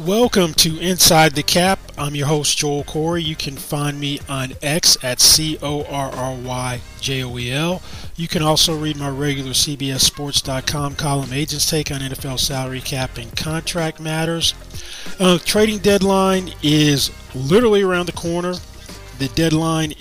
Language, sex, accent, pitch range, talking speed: English, male, American, 135-165 Hz, 160 wpm